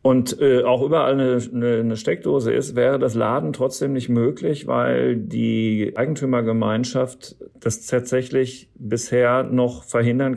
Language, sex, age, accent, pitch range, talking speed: German, male, 40-59, German, 110-130 Hz, 125 wpm